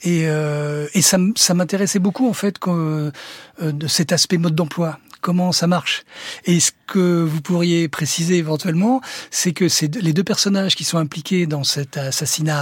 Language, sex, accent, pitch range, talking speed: French, male, French, 160-210 Hz, 165 wpm